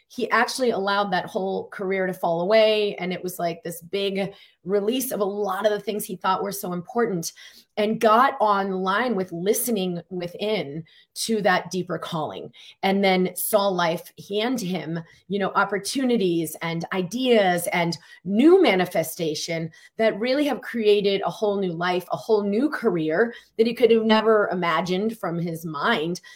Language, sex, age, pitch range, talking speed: English, female, 30-49, 175-225 Hz, 165 wpm